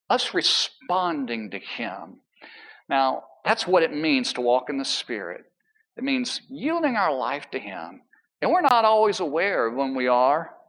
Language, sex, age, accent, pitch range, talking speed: English, male, 50-69, American, 150-235 Hz, 170 wpm